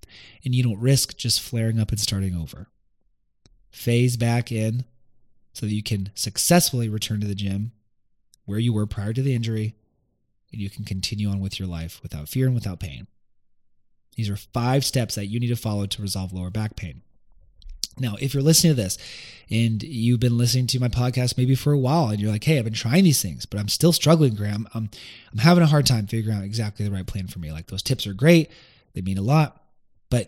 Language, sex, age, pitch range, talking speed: English, male, 20-39, 105-140 Hz, 220 wpm